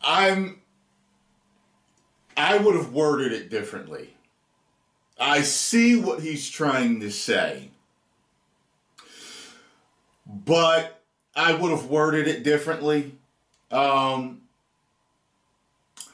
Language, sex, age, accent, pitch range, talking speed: English, male, 40-59, American, 135-190 Hz, 85 wpm